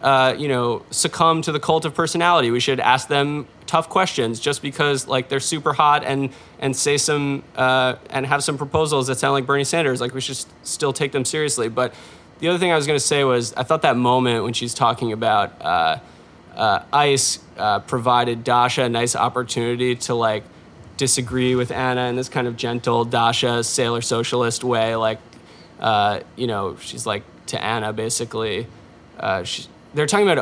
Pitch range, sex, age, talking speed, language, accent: 125-150 Hz, male, 20-39, 195 wpm, English, American